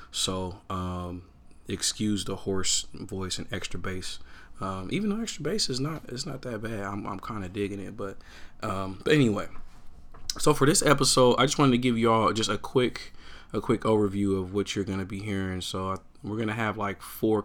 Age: 20-39